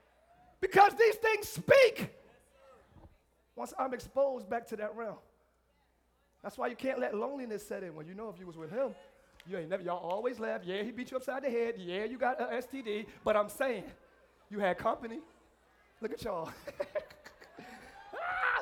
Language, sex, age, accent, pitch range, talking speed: English, male, 30-49, American, 250-380 Hz, 180 wpm